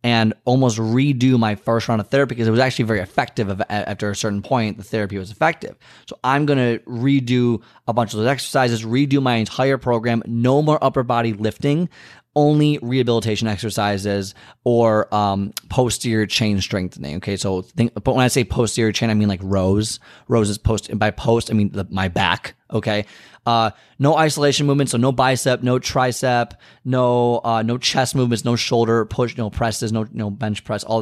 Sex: male